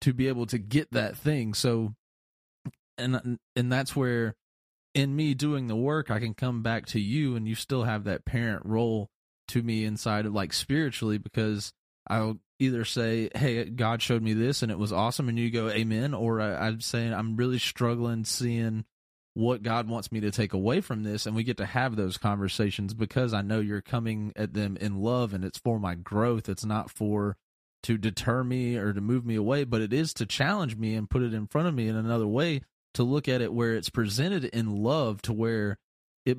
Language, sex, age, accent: English, male, 30-49, American